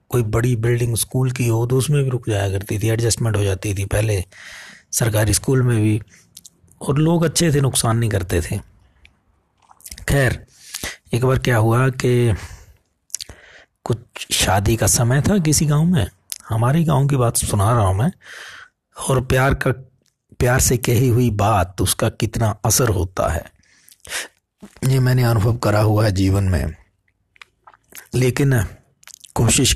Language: Hindi